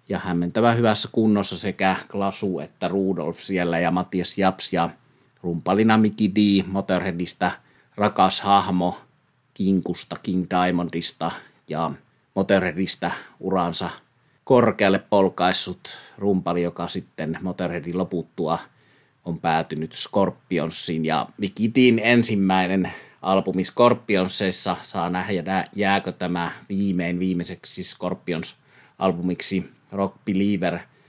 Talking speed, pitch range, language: 95 wpm, 90-100 Hz, Finnish